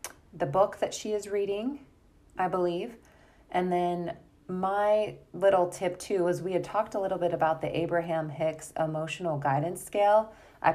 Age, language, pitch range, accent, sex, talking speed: 30-49, English, 150-180 Hz, American, female, 160 wpm